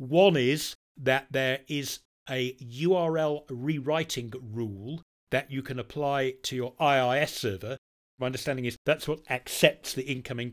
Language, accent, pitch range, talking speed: English, British, 125-145 Hz, 140 wpm